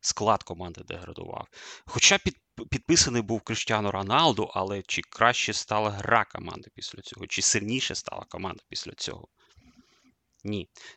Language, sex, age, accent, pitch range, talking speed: Ukrainian, male, 30-49, native, 100-120 Hz, 125 wpm